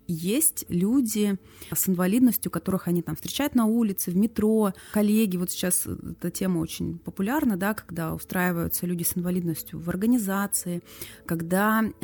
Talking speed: 140 wpm